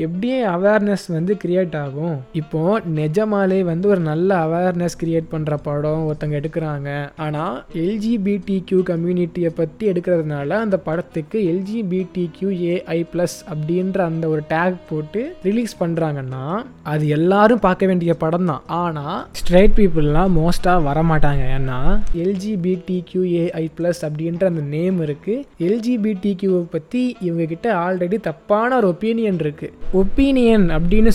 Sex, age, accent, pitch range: male, 20-39, native, 155-195 Hz